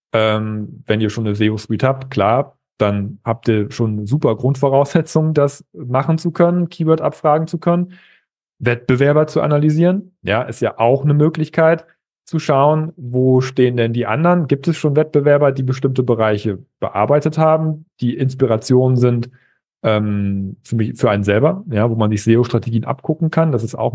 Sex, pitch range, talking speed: male, 125-160 Hz, 165 wpm